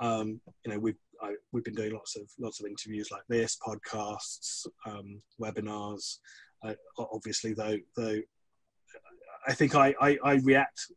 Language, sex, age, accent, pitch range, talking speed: English, male, 30-49, British, 110-135 Hz, 155 wpm